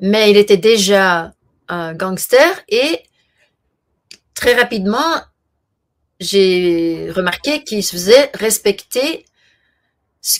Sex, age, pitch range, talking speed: female, 40-59, 180-220 Hz, 90 wpm